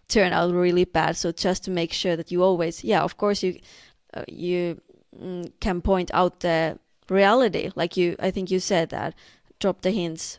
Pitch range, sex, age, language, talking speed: 180-210 Hz, female, 20-39, English, 190 wpm